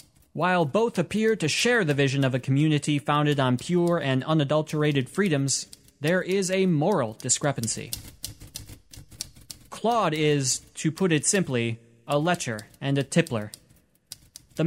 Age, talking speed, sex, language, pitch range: 20-39, 135 wpm, male, English, 135-175 Hz